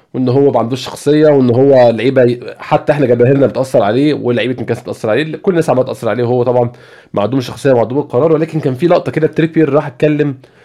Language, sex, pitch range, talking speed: Arabic, male, 120-155 Hz, 210 wpm